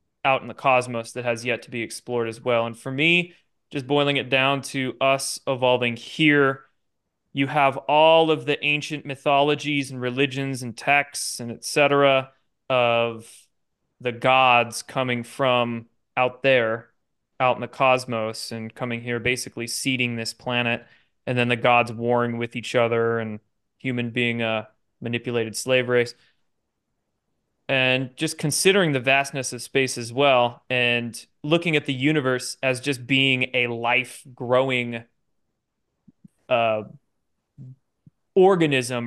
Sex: male